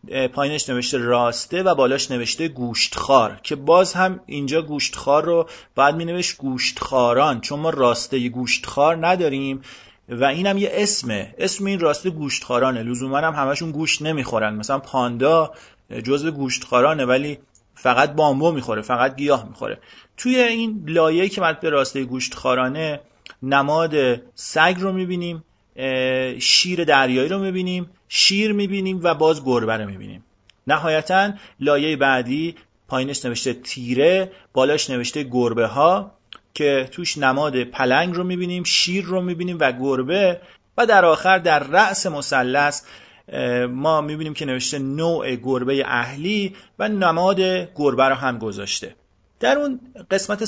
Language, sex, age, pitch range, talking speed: Persian, male, 30-49, 130-175 Hz, 140 wpm